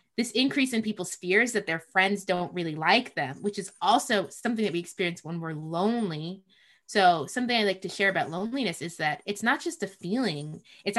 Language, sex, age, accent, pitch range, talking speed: English, female, 20-39, American, 175-235 Hz, 205 wpm